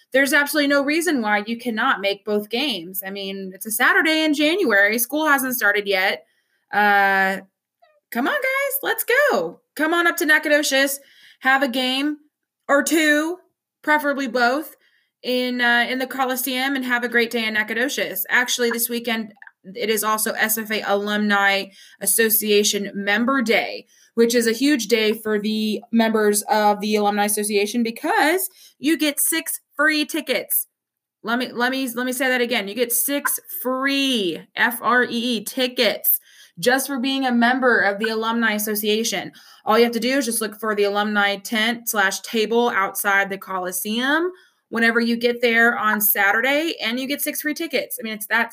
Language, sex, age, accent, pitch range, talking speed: English, female, 20-39, American, 210-270 Hz, 175 wpm